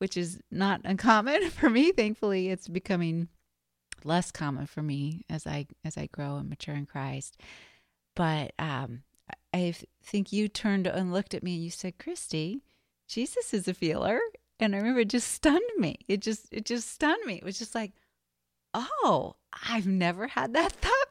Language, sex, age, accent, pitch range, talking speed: English, female, 30-49, American, 165-215 Hz, 180 wpm